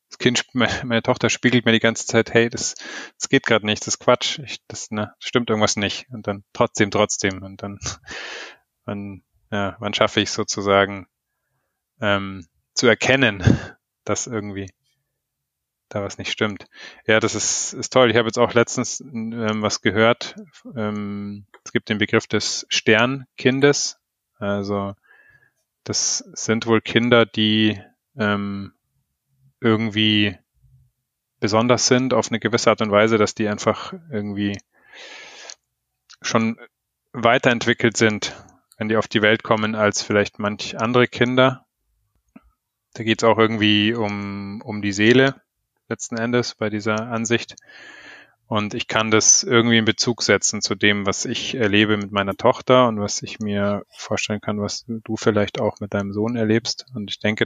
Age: 20-39